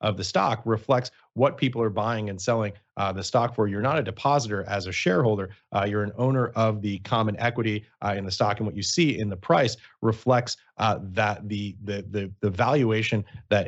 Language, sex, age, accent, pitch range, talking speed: English, male, 30-49, American, 95-115 Hz, 215 wpm